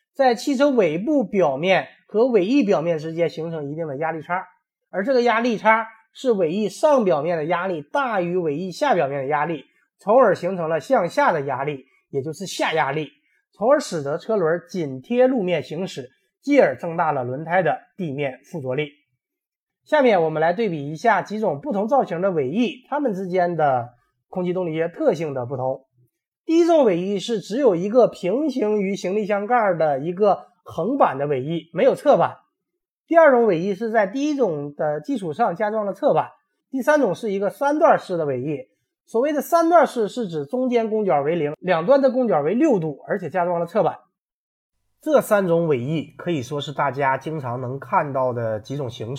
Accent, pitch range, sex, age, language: native, 145-230 Hz, male, 20-39, Chinese